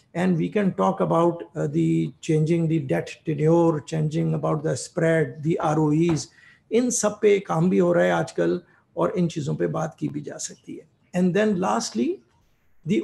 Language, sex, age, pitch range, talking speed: English, male, 50-69, 145-175 Hz, 180 wpm